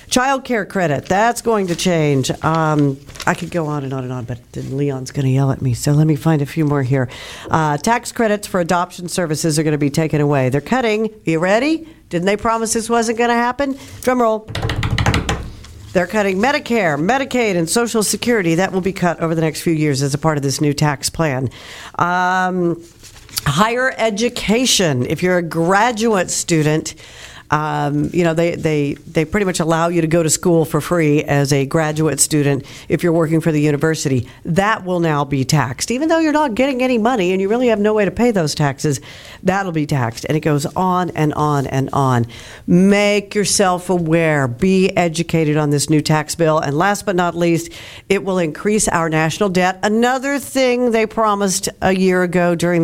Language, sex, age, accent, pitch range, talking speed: English, female, 50-69, American, 150-205 Hz, 200 wpm